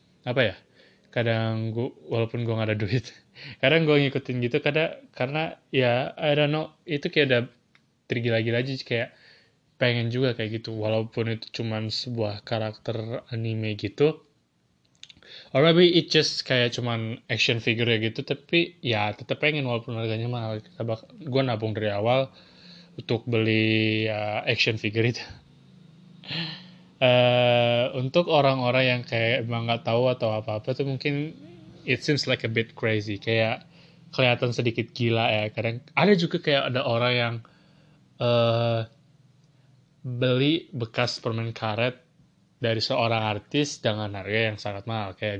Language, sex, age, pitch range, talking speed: Indonesian, male, 20-39, 115-145 Hz, 145 wpm